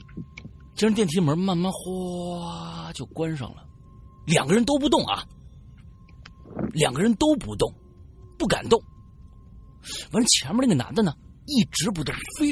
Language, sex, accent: Chinese, male, native